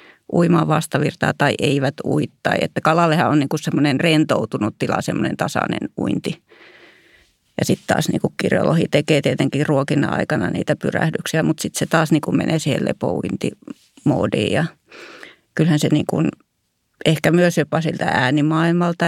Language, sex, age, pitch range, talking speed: Finnish, female, 30-49, 150-170 Hz, 135 wpm